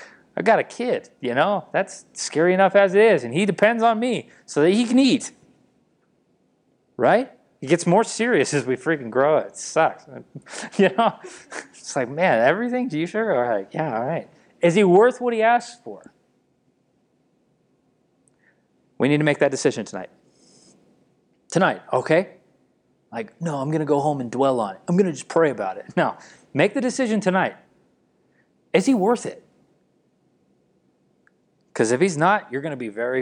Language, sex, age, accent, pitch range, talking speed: English, male, 30-49, American, 110-190 Hz, 180 wpm